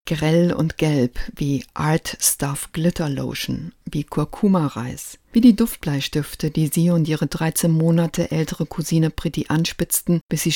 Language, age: German, 50-69